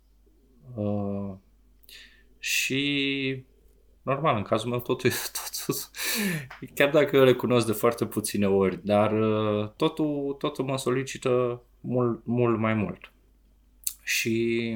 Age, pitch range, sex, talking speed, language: 20-39, 100-120 Hz, male, 105 wpm, Romanian